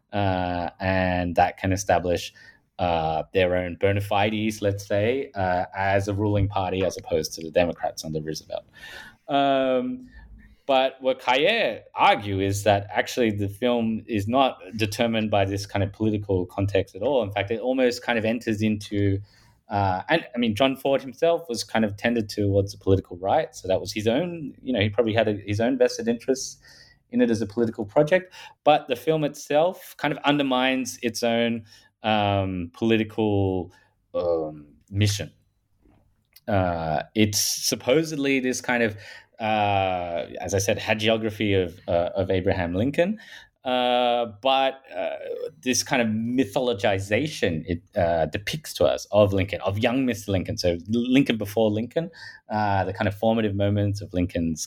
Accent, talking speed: Australian, 160 wpm